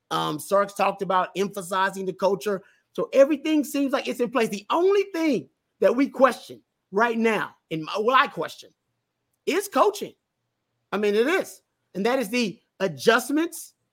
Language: English